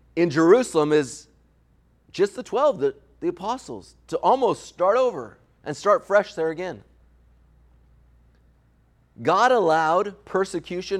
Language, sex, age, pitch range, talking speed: English, male, 40-59, 140-195 Hz, 115 wpm